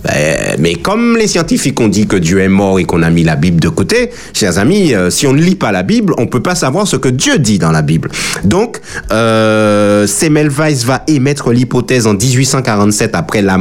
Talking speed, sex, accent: 215 wpm, male, French